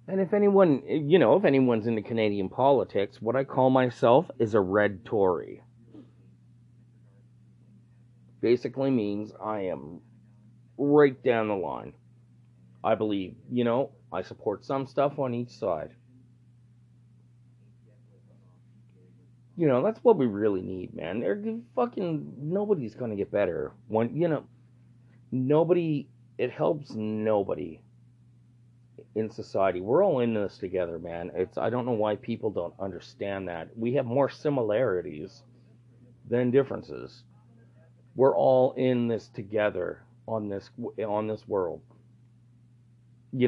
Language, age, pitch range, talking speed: English, 30-49, 100-125 Hz, 130 wpm